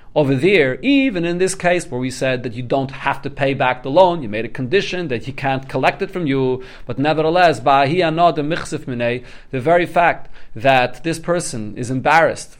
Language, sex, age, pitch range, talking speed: English, male, 40-59, 130-180 Hz, 200 wpm